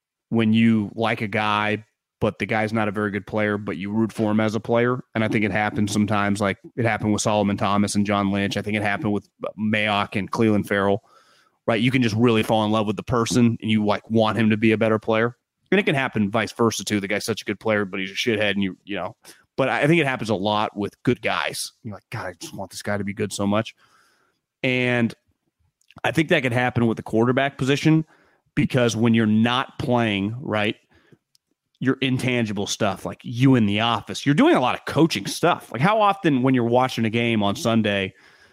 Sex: male